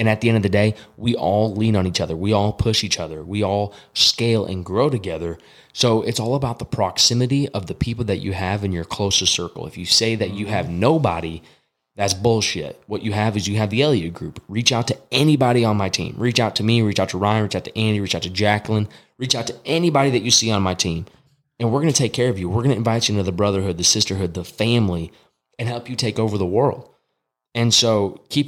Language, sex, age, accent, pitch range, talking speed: English, male, 20-39, American, 95-115 Hz, 255 wpm